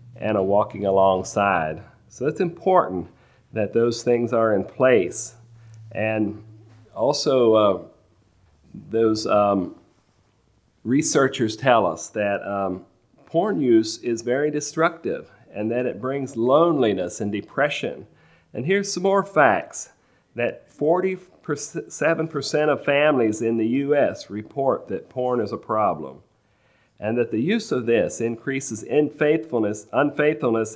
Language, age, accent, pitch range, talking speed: English, 40-59, American, 105-140 Hz, 120 wpm